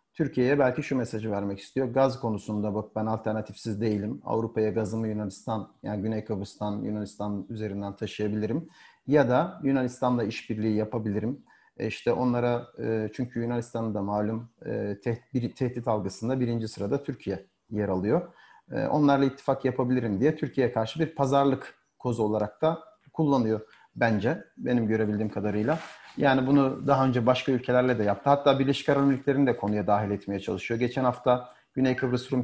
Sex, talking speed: male, 140 wpm